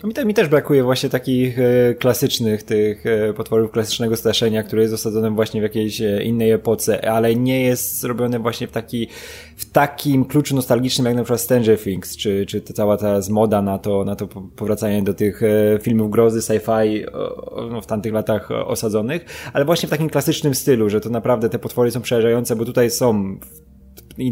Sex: male